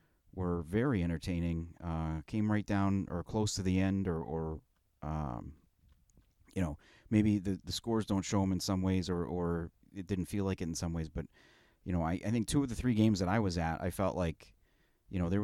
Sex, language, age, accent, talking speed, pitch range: male, English, 30-49, American, 225 wpm, 90-110 Hz